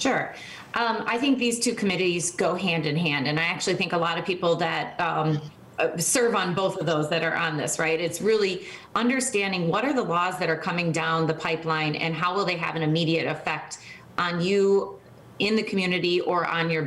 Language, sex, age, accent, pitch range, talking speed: English, female, 30-49, American, 160-190 Hz, 215 wpm